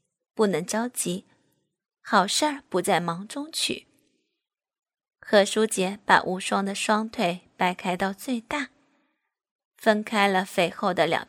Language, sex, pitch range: Chinese, female, 195-255 Hz